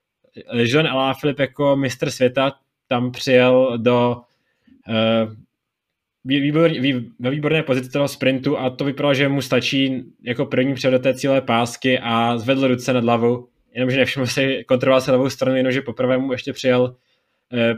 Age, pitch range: 20-39, 120-130 Hz